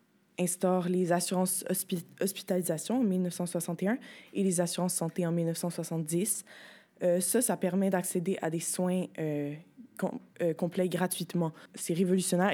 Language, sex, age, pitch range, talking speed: French, female, 20-39, 170-195 Hz, 135 wpm